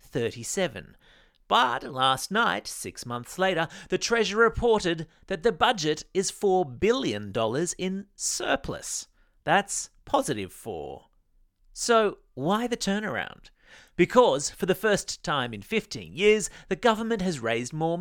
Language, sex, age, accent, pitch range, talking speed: English, male, 30-49, Australian, 125-195 Hz, 125 wpm